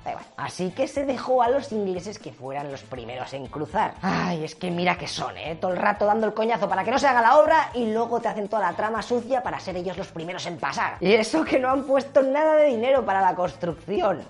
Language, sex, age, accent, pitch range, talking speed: English, female, 20-39, Spanish, 160-255 Hz, 250 wpm